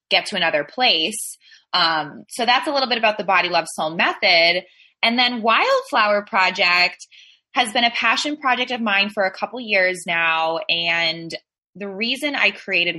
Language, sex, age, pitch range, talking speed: English, female, 20-39, 160-210 Hz, 170 wpm